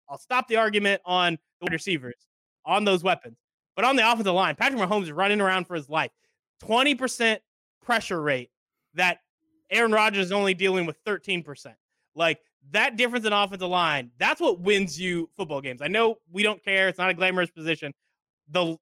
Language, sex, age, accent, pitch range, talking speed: English, male, 20-39, American, 155-215 Hz, 180 wpm